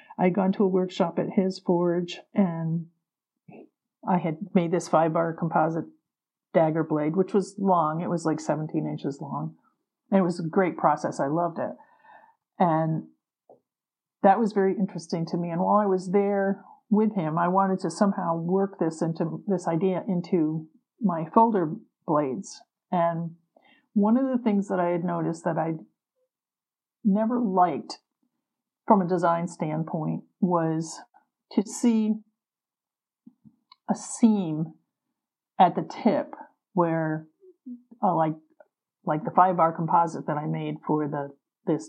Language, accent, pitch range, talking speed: English, American, 165-205 Hz, 145 wpm